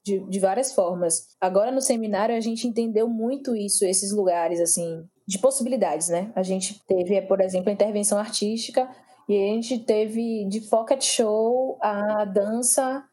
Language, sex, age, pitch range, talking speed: Portuguese, female, 10-29, 195-235 Hz, 160 wpm